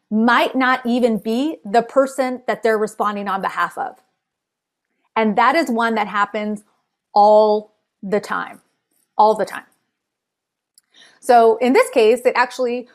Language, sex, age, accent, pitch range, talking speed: English, female, 30-49, American, 210-255 Hz, 140 wpm